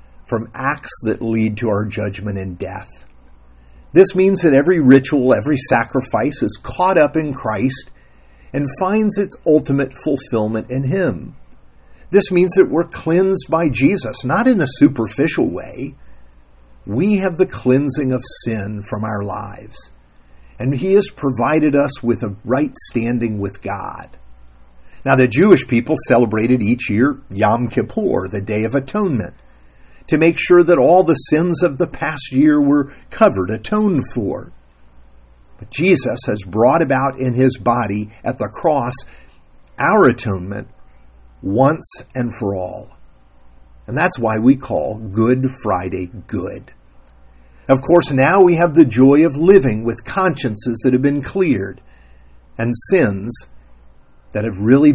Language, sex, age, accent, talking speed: English, male, 50-69, American, 145 wpm